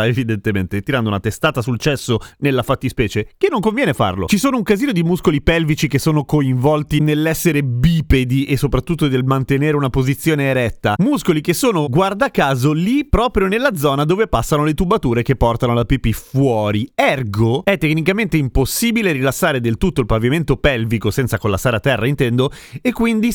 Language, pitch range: Italian, 125-205 Hz